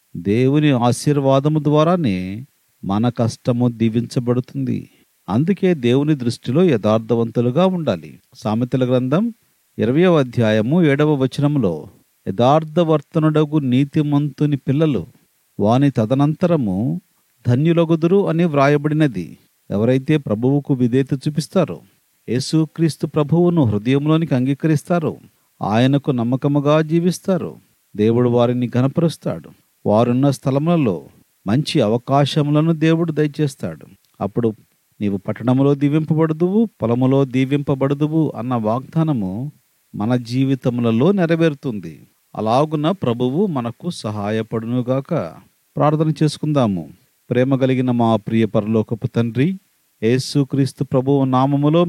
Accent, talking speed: native, 80 wpm